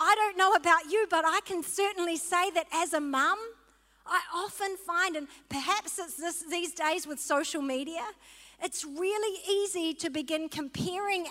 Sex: female